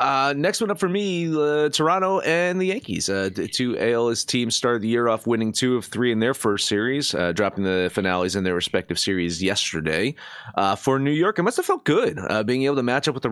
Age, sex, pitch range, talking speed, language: 30-49, male, 110-165 Hz, 240 wpm, English